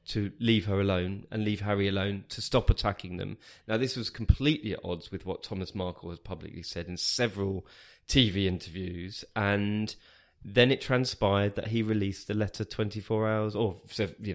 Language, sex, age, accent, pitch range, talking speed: English, male, 20-39, British, 95-110 Hz, 175 wpm